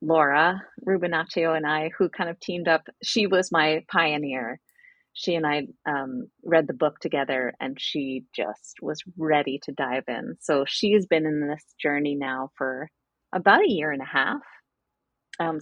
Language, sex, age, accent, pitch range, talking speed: English, female, 30-49, American, 145-180 Hz, 175 wpm